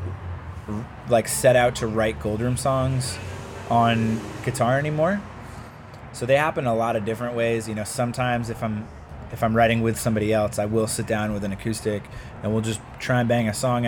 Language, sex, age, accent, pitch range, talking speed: English, male, 20-39, American, 105-120 Hz, 190 wpm